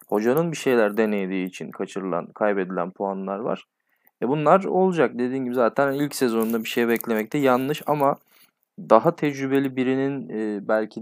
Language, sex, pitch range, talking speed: Turkish, male, 115-140 Hz, 140 wpm